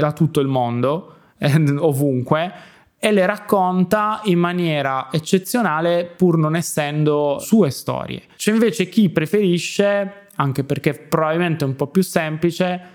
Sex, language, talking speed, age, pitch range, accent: male, Italian, 135 wpm, 20-39, 140-170 Hz, native